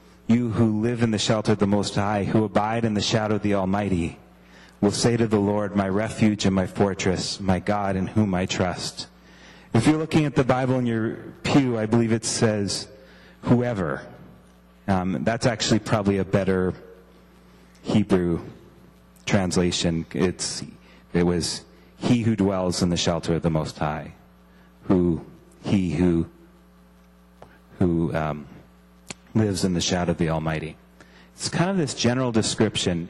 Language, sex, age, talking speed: English, male, 30-49, 160 wpm